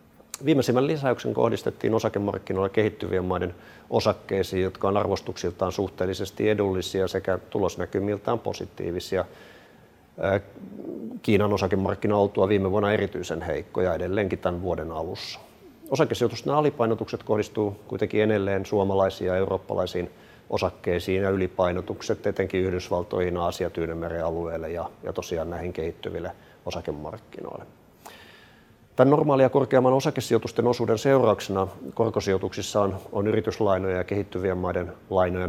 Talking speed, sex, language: 105 wpm, male, Finnish